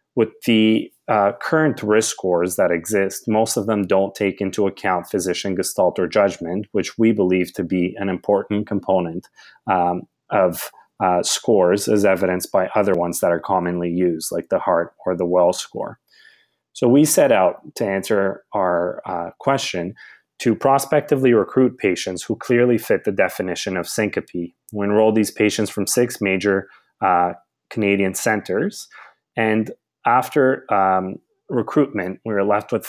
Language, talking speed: English, 155 wpm